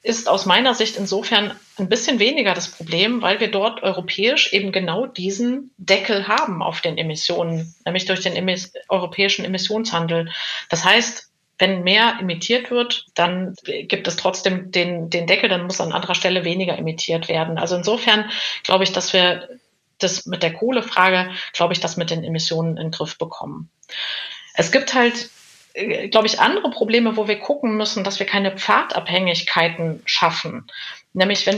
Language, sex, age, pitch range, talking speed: German, female, 30-49, 180-215 Hz, 165 wpm